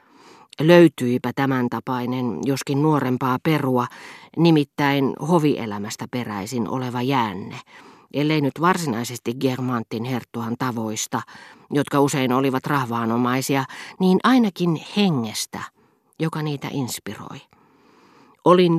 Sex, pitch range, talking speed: female, 125-150 Hz, 90 wpm